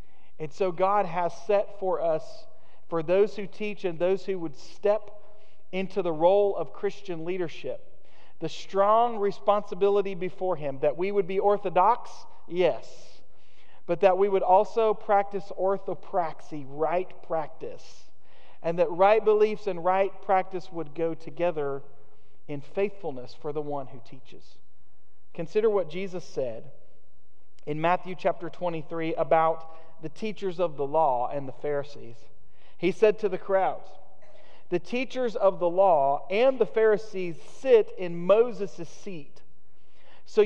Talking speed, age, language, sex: 140 wpm, 40-59, English, male